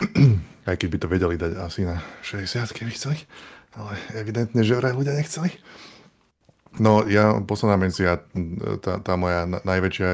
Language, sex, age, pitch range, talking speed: Slovak, male, 20-39, 90-100 Hz, 150 wpm